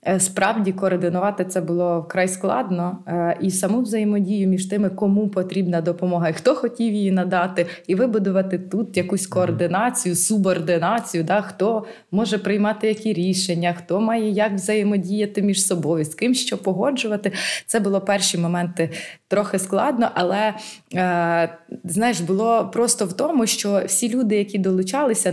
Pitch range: 180-210 Hz